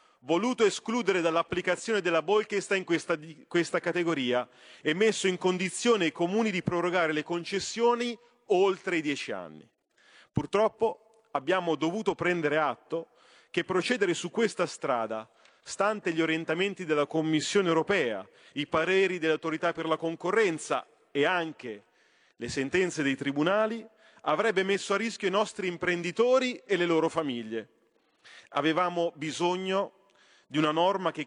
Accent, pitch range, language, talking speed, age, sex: native, 150-195 Hz, Italian, 130 wpm, 40-59, male